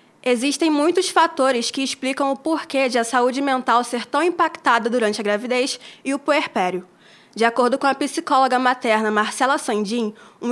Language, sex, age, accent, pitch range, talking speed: Portuguese, female, 20-39, Brazilian, 235-285 Hz, 165 wpm